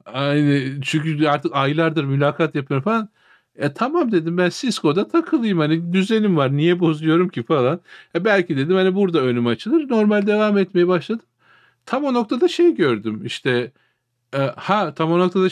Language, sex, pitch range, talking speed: Turkish, male, 120-170 Hz, 160 wpm